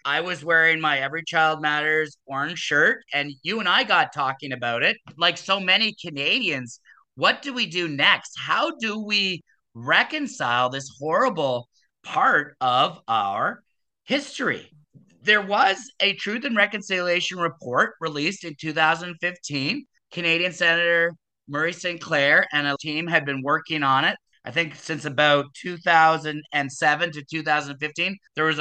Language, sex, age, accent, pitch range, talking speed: English, male, 30-49, American, 150-180 Hz, 140 wpm